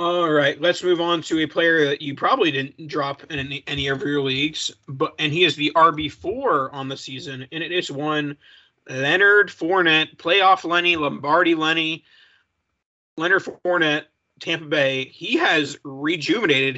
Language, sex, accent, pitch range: English, male, American, 145-175 Hz